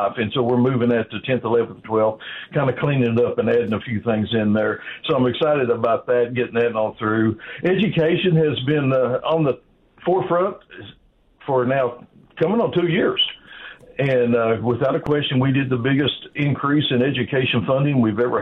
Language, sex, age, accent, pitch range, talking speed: English, male, 60-79, American, 120-140 Hz, 190 wpm